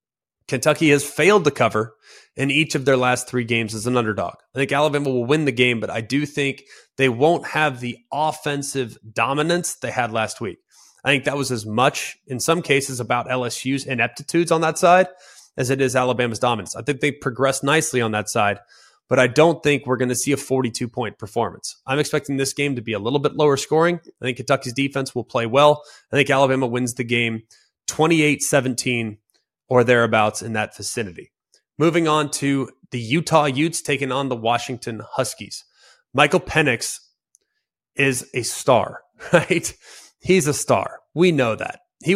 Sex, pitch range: male, 125-150 Hz